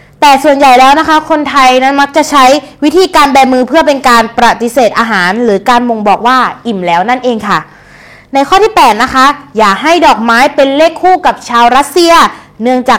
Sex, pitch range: female, 240-310 Hz